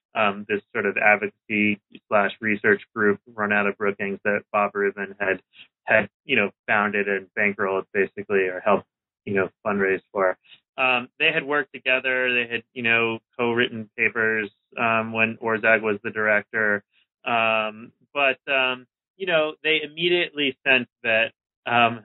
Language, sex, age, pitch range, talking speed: English, male, 30-49, 105-125 Hz, 150 wpm